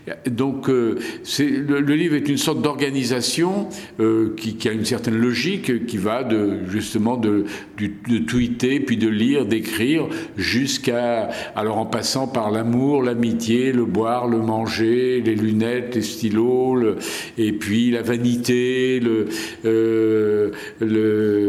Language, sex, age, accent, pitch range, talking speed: French, male, 50-69, French, 110-130 Hz, 140 wpm